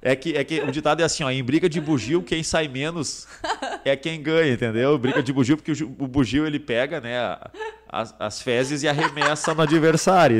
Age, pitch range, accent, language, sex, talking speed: 30-49, 110-150 Hz, Brazilian, Portuguese, male, 215 wpm